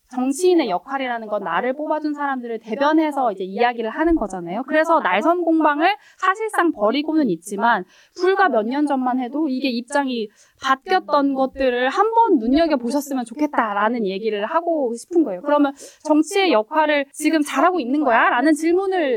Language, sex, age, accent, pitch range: Korean, female, 20-39, native, 225-315 Hz